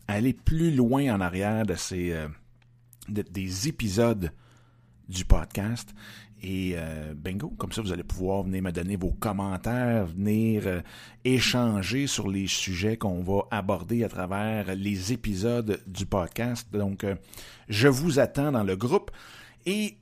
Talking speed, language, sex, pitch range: 150 wpm, French, male, 95-120 Hz